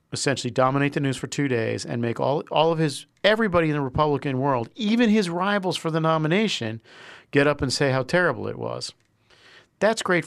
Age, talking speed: 50-69, 205 wpm